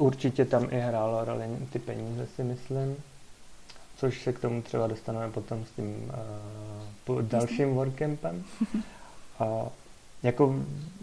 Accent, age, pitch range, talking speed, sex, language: native, 30-49, 115-130 Hz, 120 wpm, male, Czech